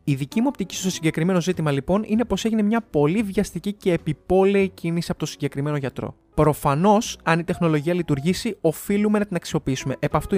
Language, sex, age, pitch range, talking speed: Greek, male, 20-39, 160-205 Hz, 185 wpm